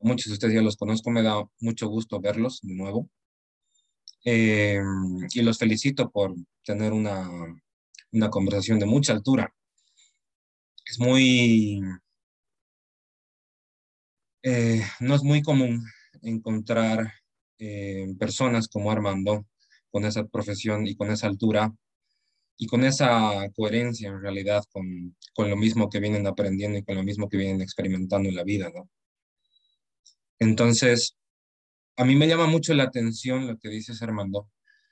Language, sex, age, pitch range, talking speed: Portuguese, male, 20-39, 100-120 Hz, 135 wpm